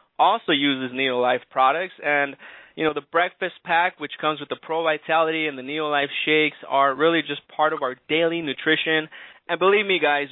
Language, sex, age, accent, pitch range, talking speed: English, male, 20-39, American, 145-175 Hz, 185 wpm